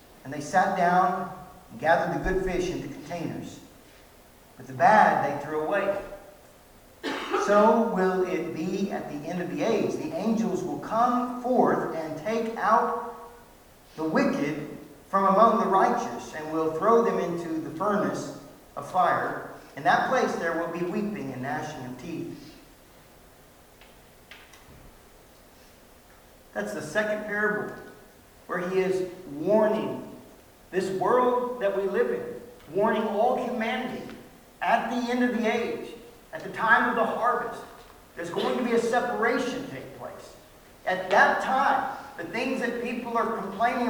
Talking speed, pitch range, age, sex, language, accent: 145 wpm, 185-245 Hz, 50-69, male, English, American